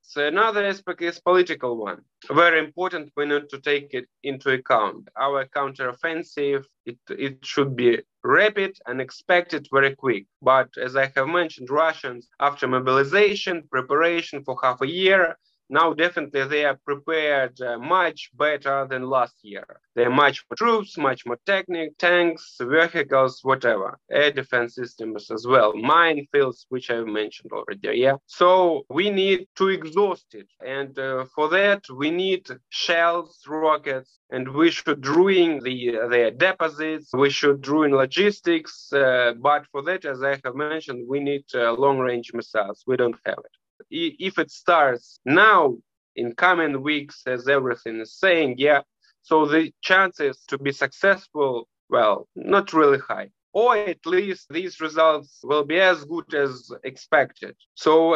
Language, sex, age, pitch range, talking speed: English, male, 20-39, 130-170 Hz, 155 wpm